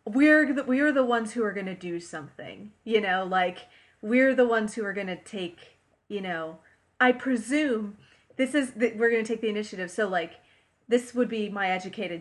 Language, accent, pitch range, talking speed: English, American, 170-215 Hz, 195 wpm